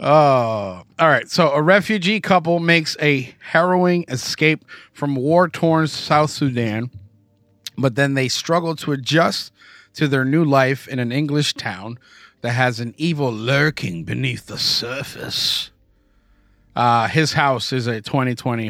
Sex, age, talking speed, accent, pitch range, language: male, 30-49, 140 wpm, American, 105-140 Hz, English